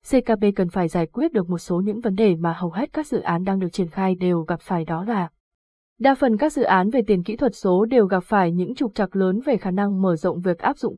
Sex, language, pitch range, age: female, Vietnamese, 200-255 Hz, 20-39